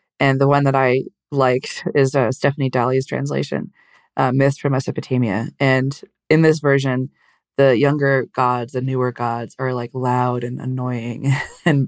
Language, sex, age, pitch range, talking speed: English, female, 20-39, 130-150 Hz, 155 wpm